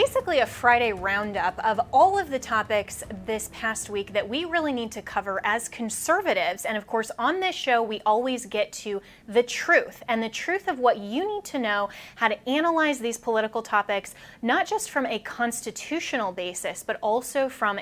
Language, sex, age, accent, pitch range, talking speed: English, female, 20-39, American, 210-270 Hz, 190 wpm